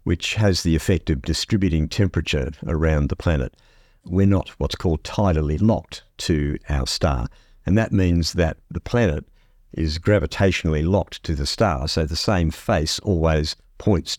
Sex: male